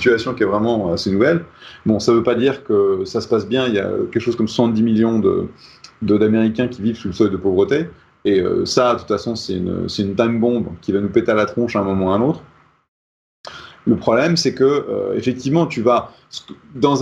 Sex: male